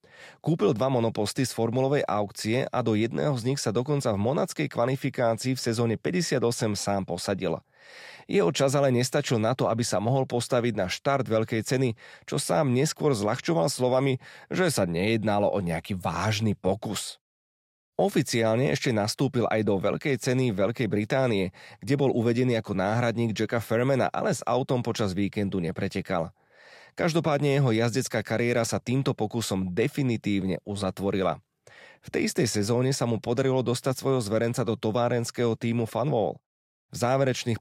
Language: Slovak